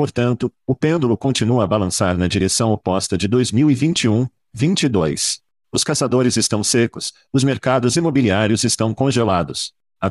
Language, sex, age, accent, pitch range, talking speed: Portuguese, male, 50-69, Brazilian, 100-130 Hz, 130 wpm